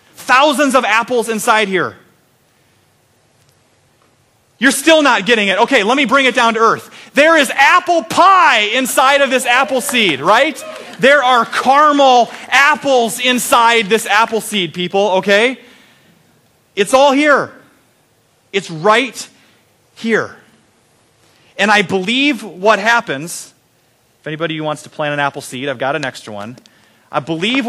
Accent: American